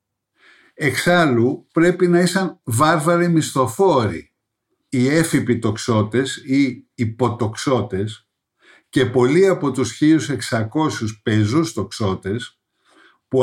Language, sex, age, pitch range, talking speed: Greek, male, 50-69, 110-150 Hz, 80 wpm